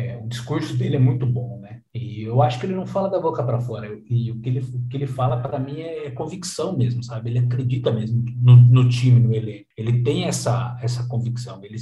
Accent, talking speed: Brazilian, 240 wpm